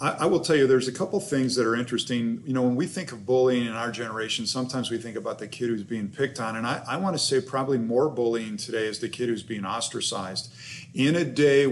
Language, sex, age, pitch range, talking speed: English, male, 40-59, 120-140 Hz, 255 wpm